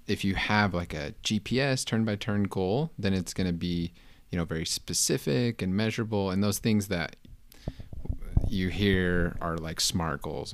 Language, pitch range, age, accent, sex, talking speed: English, 85-105 Hz, 30-49, American, male, 175 wpm